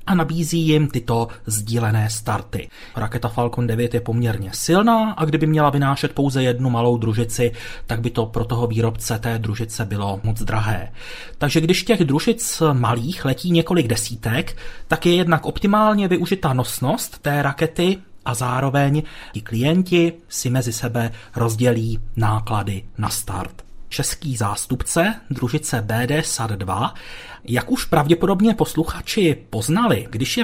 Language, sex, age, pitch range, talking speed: Czech, male, 30-49, 115-170 Hz, 135 wpm